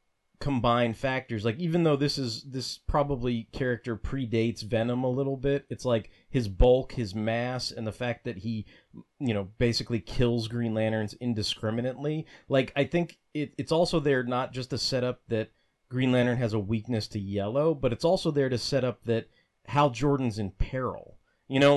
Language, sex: English, male